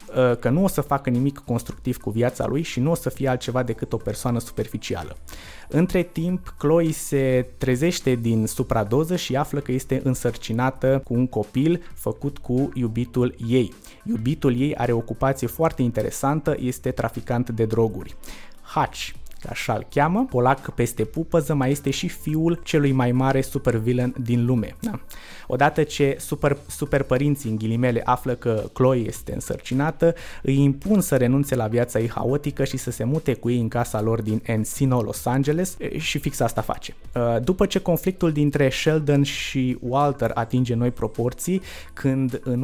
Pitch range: 120-145 Hz